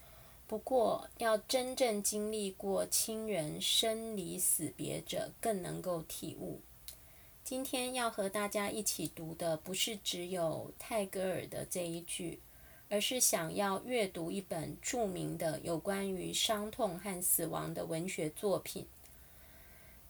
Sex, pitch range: female, 175-215 Hz